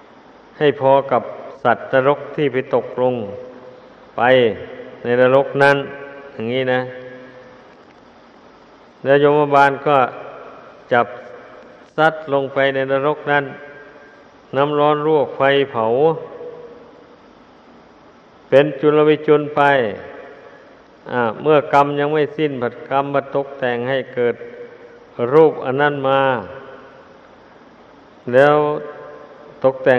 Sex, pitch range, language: male, 130-145 Hz, Thai